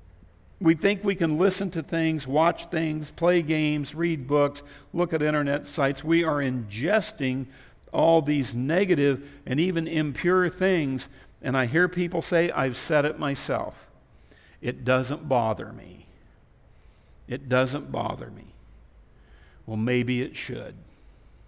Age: 60-79